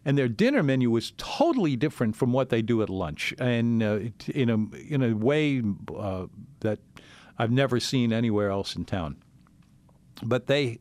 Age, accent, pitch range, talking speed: 60-79, American, 110-135 Hz, 170 wpm